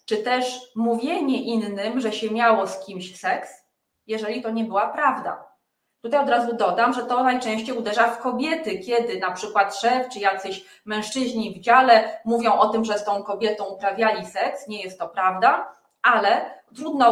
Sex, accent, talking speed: female, native, 170 wpm